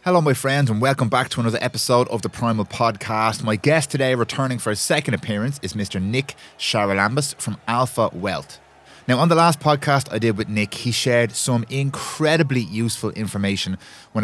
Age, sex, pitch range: 20-39, male, 100-135 Hz